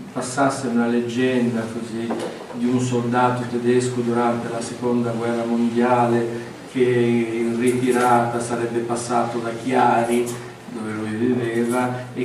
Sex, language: male, Italian